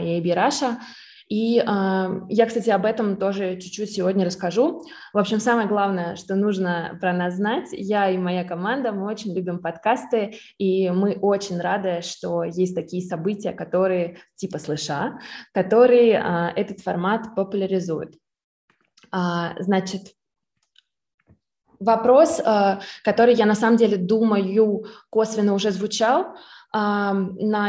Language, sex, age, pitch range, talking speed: Russian, female, 20-39, 185-215 Hz, 130 wpm